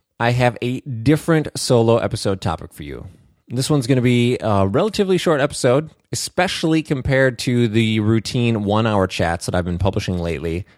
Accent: American